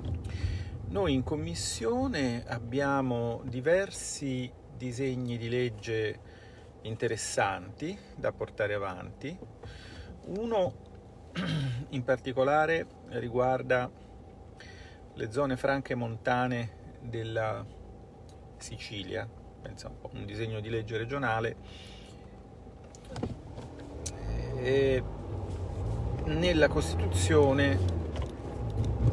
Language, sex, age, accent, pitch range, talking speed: Italian, male, 50-69, native, 95-125 Hz, 70 wpm